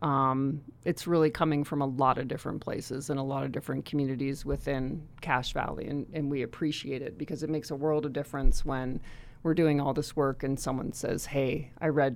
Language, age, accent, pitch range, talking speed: English, 30-49, American, 135-165 Hz, 210 wpm